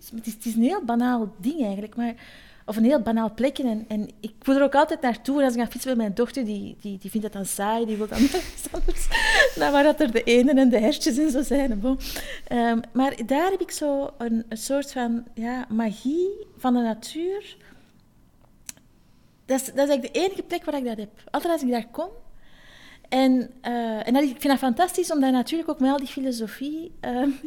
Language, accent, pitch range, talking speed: Dutch, Dutch, 225-280 Hz, 225 wpm